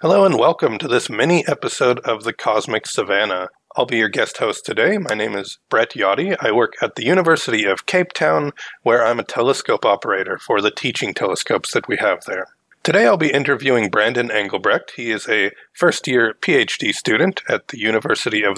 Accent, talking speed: American, 185 wpm